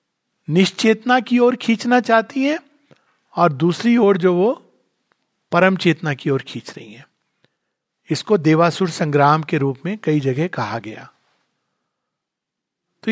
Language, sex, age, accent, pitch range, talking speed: Hindi, male, 50-69, native, 150-200 Hz, 135 wpm